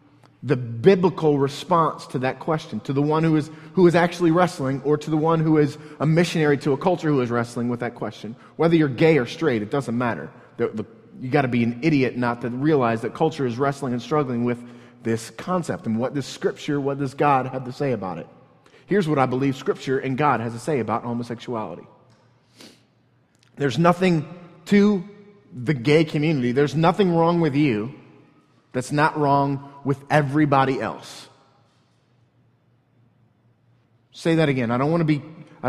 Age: 30-49